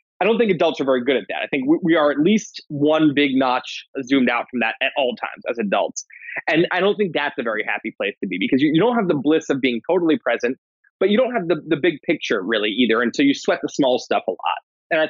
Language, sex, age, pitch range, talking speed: English, male, 20-39, 130-200 Hz, 275 wpm